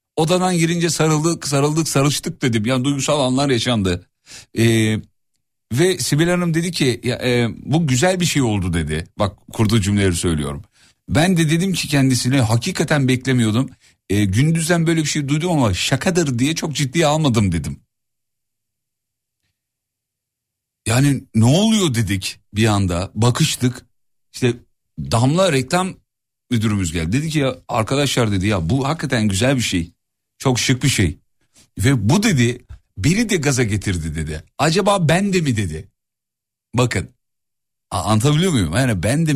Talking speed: 145 wpm